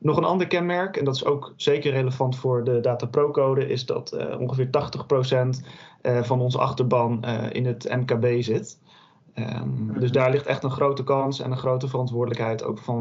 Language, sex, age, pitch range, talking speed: Dutch, male, 30-49, 120-140 Hz, 195 wpm